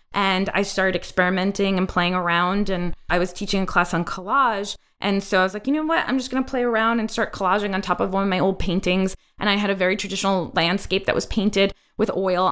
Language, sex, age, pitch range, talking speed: English, female, 20-39, 180-210 Hz, 250 wpm